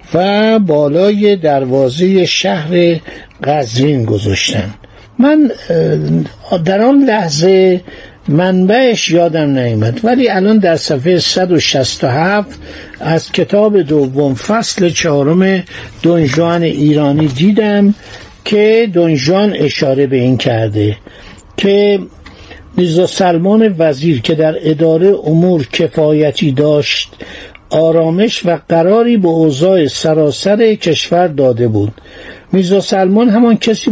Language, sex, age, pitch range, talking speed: Persian, male, 60-79, 145-200 Hz, 95 wpm